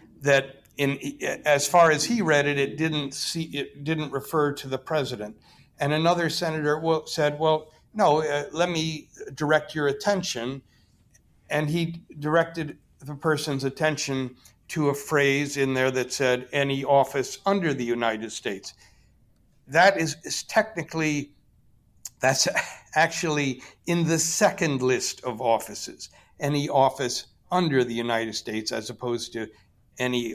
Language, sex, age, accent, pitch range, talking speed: English, male, 60-79, American, 120-155 Hz, 135 wpm